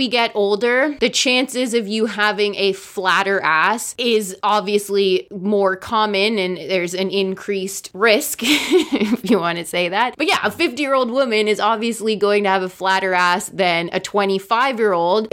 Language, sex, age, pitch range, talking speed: English, female, 20-39, 190-230 Hz, 160 wpm